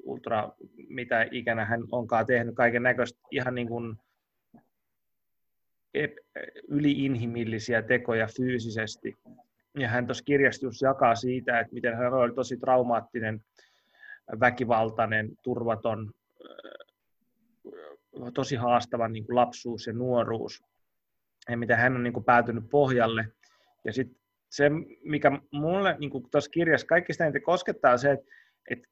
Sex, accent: male, native